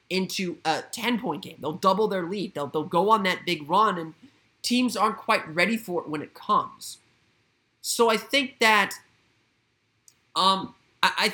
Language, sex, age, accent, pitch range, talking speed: English, male, 20-39, American, 155-200 Hz, 165 wpm